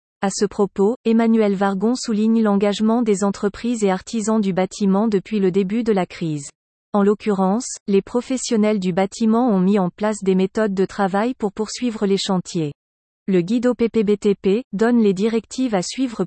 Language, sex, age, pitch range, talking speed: French, female, 40-59, 195-230 Hz, 170 wpm